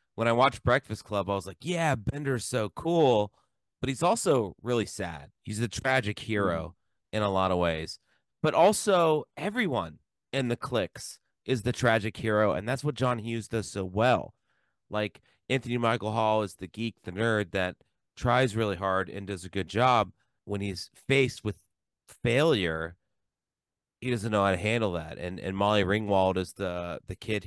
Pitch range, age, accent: 100-125 Hz, 30-49, American